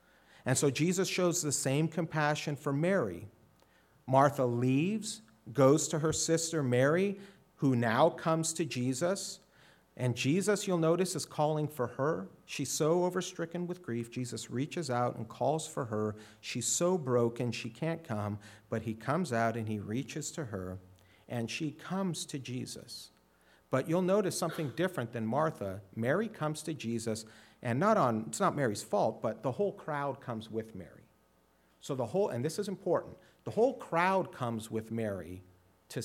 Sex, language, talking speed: male, English, 165 wpm